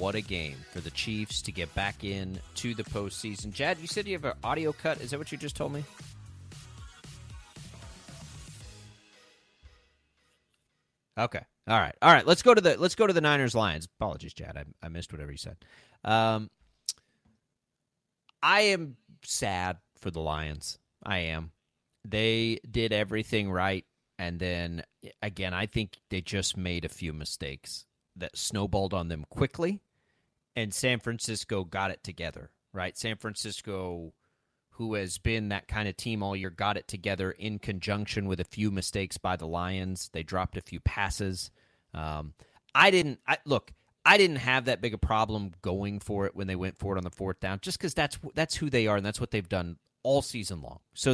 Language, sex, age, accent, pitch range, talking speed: English, male, 30-49, American, 90-120 Hz, 185 wpm